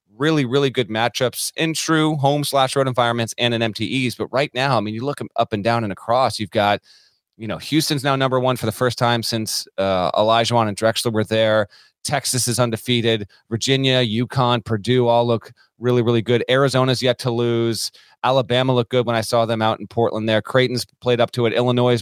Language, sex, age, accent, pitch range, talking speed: English, male, 30-49, American, 110-130 Hz, 205 wpm